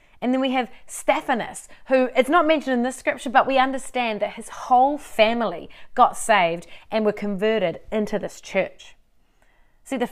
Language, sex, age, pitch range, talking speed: English, female, 30-49, 190-255 Hz, 170 wpm